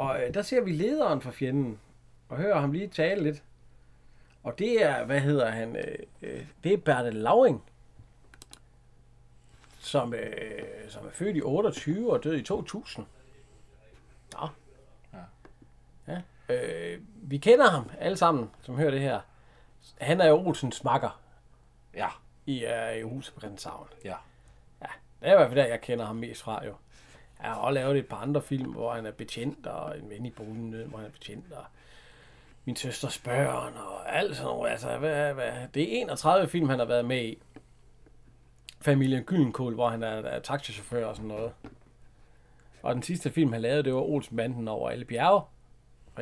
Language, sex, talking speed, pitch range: Danish, male, 175 wpm, 120-150 Hz